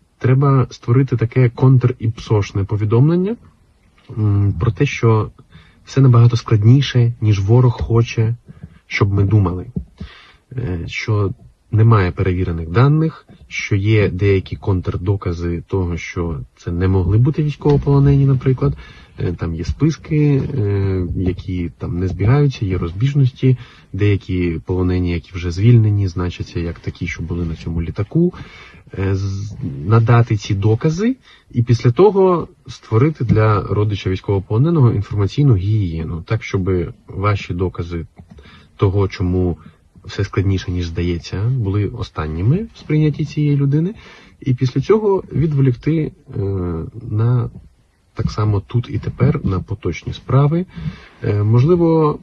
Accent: native